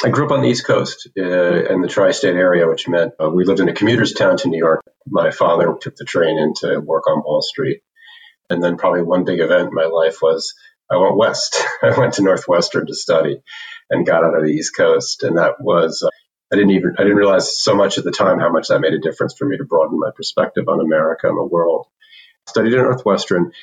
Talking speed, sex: 245 wpm, male